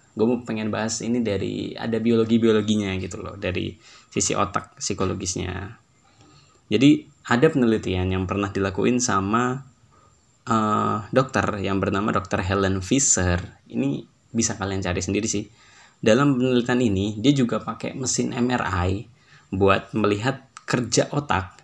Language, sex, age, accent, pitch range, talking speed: Indonesian, male, 20-39, native, 95-120 Hz, 125 wpm